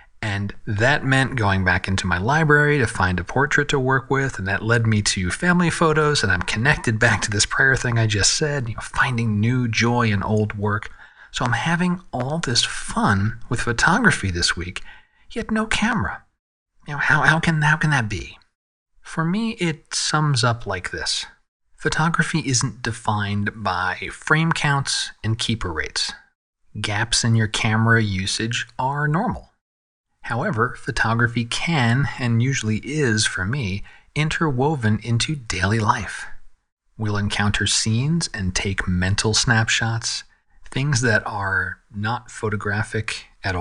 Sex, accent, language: male, American, English